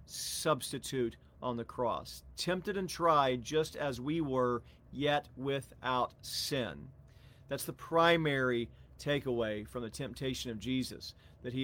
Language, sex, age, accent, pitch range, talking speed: English, male, 40-59, American, 120-145 Hz, 130 wpm